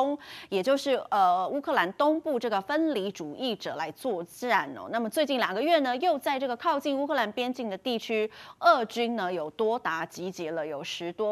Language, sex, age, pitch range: Chinese, female, 20-39, 185-285 Hz